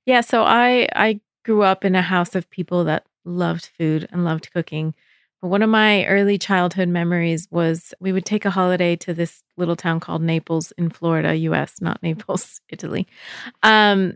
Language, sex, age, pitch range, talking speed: English, female, 30-49, 165-200 Hz, 180 wpm